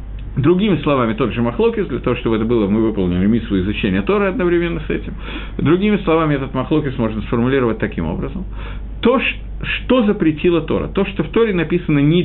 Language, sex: Russian, male